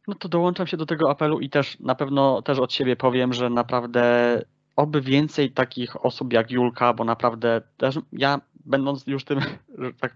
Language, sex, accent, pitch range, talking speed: Polish, male, native, 120-140 Hz, 185 wpm